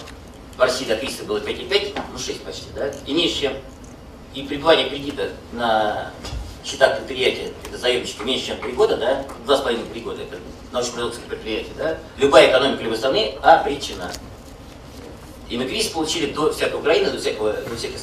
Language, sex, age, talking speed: Russian, male, 50-69, 155 wpm